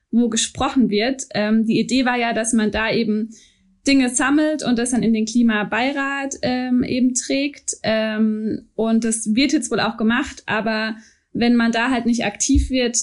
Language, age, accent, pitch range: German, 20-39, German, 220-255 Hz